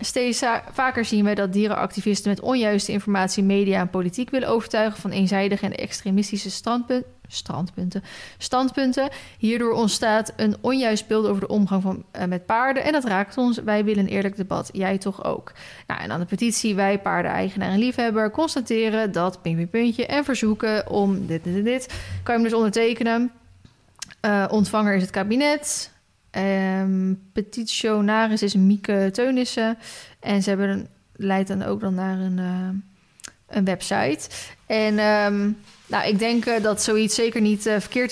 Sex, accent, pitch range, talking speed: female, Dutch, 190-230 Hz, 155 wpm